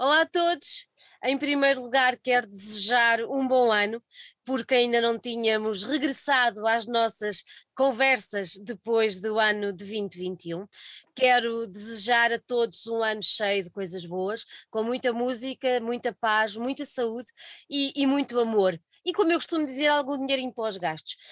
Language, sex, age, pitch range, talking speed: Portuguese, female, 20-39, 215-265 Hz, 150 wpm